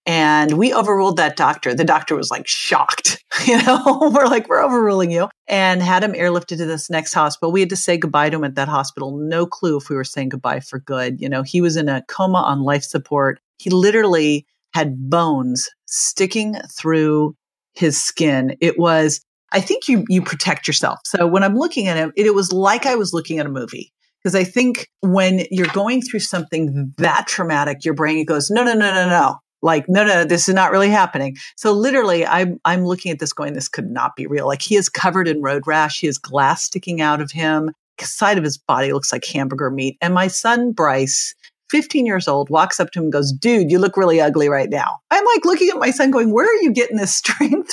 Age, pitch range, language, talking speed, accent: 40-59, 150-205 Hz, English, 230 wpm, American